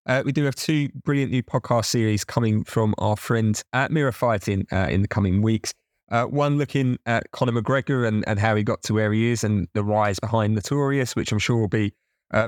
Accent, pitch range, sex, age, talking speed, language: British, 105-130 Hz, male, 20-39, 225 wpm, English